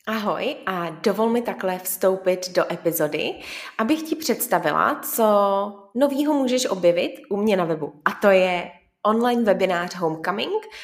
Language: Czech